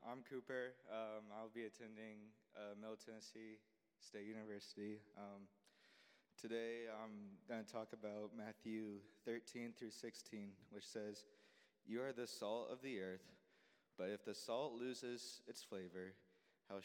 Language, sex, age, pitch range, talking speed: English, male, 20-39, 105-120 Hz, 140 wpm